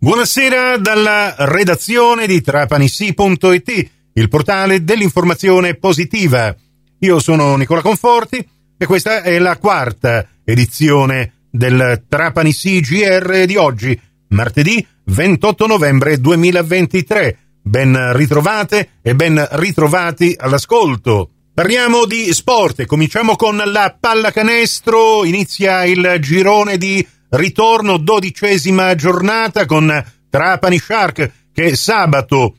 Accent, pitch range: native, 145-205 Hz